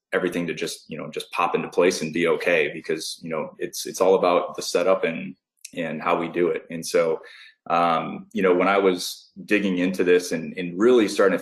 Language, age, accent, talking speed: English, 30-49, American, 225 wpm